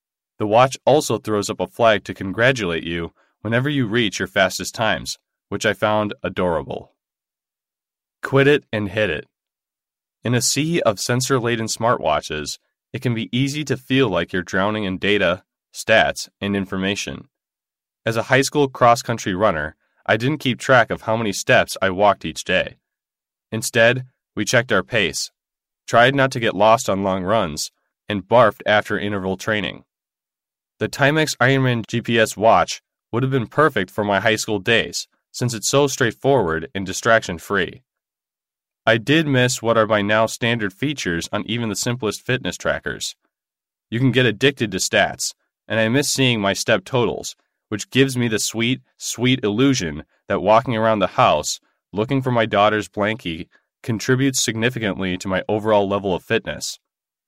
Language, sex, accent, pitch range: English, male, American, 100-125 Hz